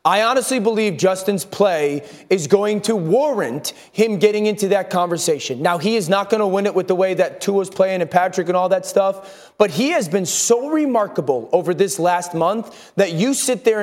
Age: 30-49